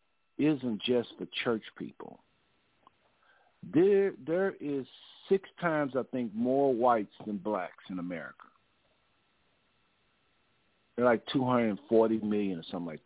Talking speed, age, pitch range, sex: 115 wpm, 50-69, 105-145 Hz, male